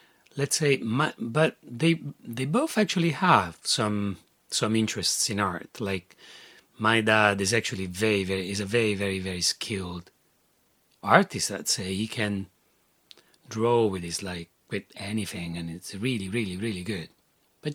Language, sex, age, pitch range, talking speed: English, male, 30-49, 90-115 Hz, 150 wpm